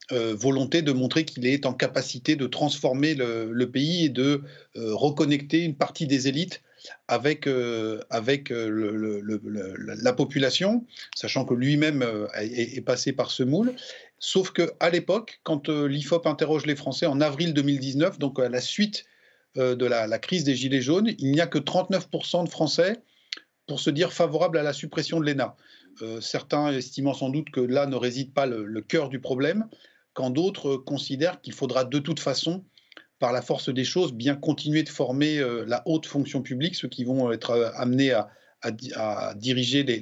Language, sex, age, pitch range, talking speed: French, male, 40-59, 125-155 Hz, 190 wpm